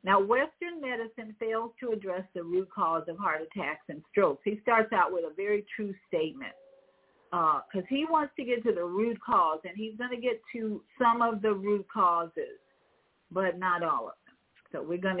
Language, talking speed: English, 200 wpm